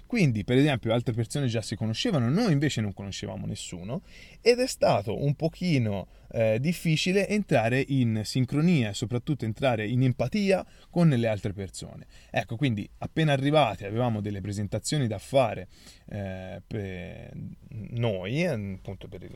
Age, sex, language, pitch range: 20-39, male, Italian, 110-130 Hz